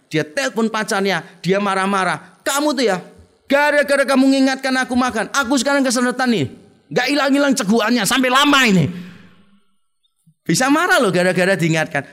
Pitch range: 165-250 Hz